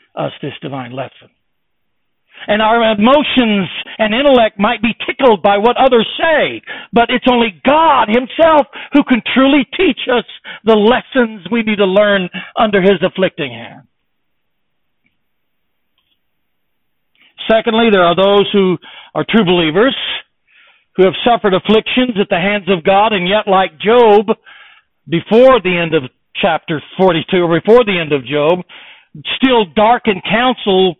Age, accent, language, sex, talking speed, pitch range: 60-79, American, English, male, 140 wpm, 180-245 Hz